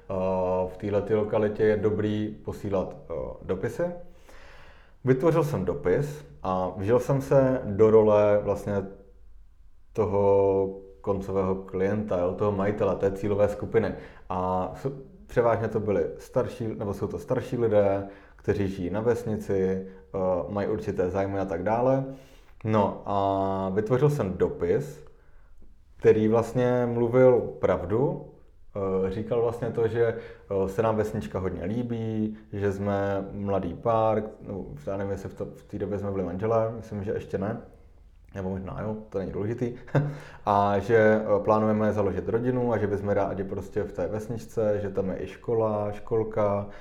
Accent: native